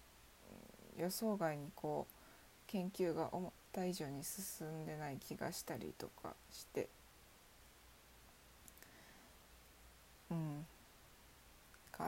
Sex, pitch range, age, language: female, 150-220 Hz, 20-39, Japanese